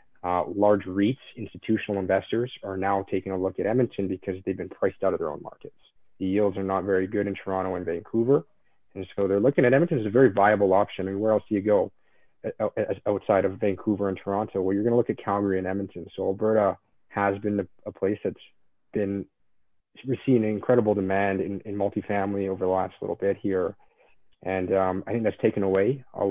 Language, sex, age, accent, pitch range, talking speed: English, male, 30-49, American, 95-110 Hz, 205 wpm